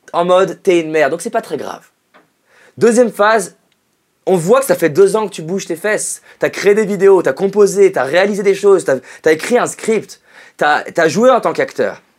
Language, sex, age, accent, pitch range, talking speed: French, male, 20-39, French, 155-215 Hz, 210 wpm